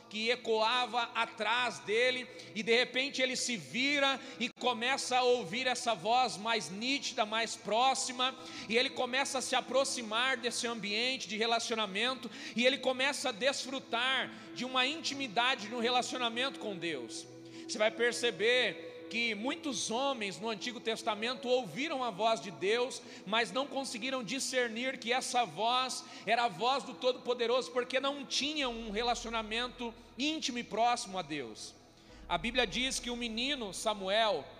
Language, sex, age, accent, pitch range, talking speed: Portuguese, male, 40-59, Brazilian, 225-260 Hz, 145 wpm